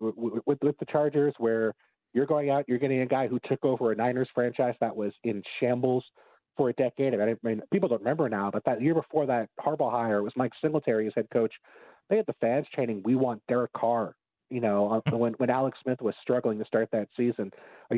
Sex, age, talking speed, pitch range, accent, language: male, 30-49, 225 wpm, 115-140 Hz, American, English